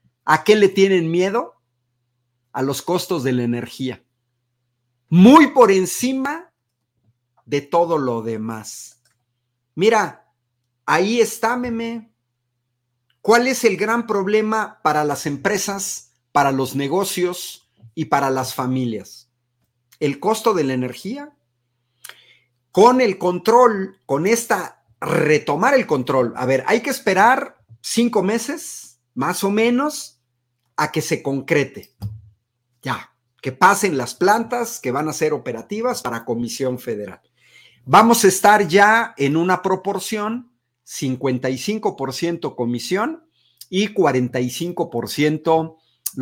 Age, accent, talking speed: 50-69, Mexican, 115 wpm